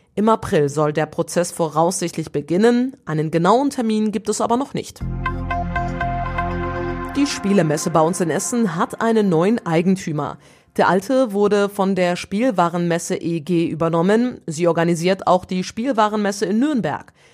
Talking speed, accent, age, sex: 140 wpm, German, 30-49, female